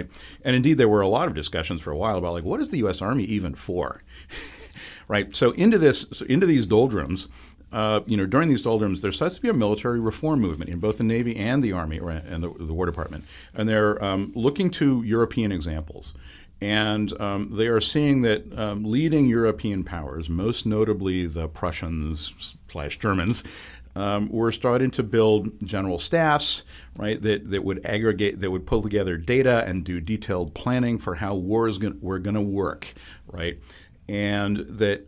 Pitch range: 90-115 Hz